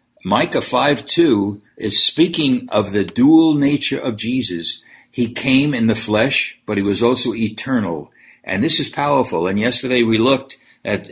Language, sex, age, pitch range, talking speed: English, male, 60-79, 105-140 Hz, 155 wpm